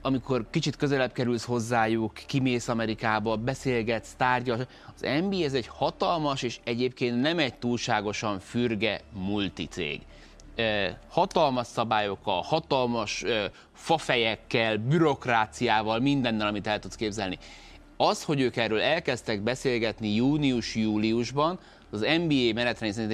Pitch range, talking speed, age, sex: 105-130 Hz, 105 wpm, 30-49, male